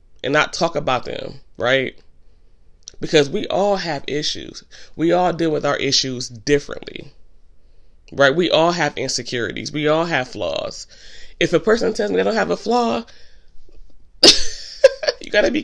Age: 30-49